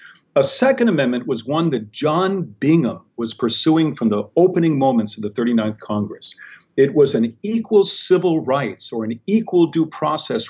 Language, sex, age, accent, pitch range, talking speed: English, male, 50-69, American, 115-170 Hz, 165 wpm